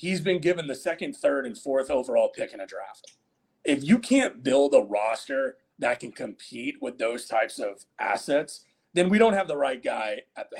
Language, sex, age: English, male, 30-49